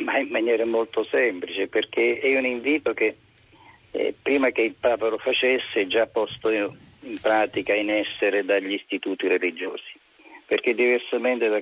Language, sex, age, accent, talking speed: Italian, male, 50-69, native, 155 wpm